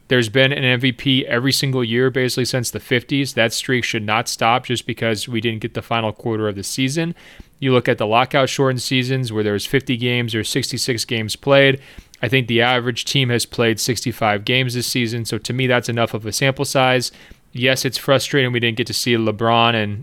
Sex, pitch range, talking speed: male, 115-130 Hz, 220 wpm